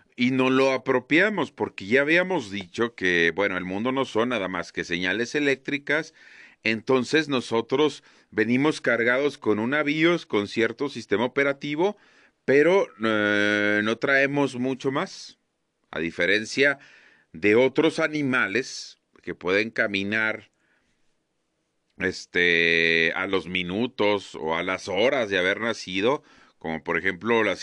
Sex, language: male, Spanish